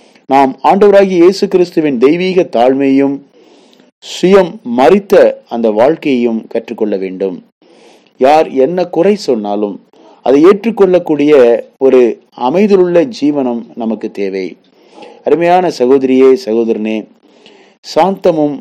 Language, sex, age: Tamil, male, 30-49